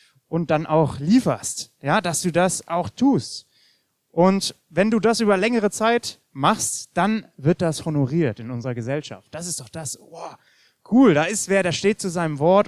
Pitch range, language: 135-185 Hz, German